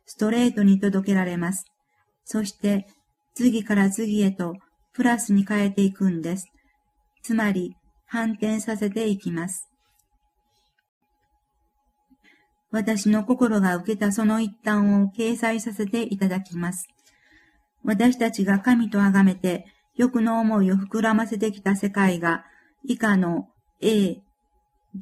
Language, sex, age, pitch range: Japanese, female, 50-69, 195-225 Hz